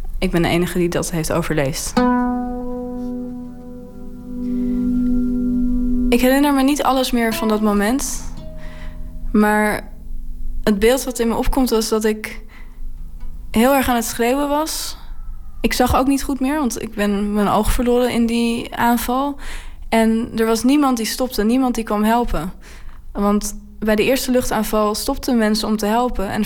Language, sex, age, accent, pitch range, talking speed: Dutch, female, 20-39, Dutch, 195-240 Hz, 155 wpm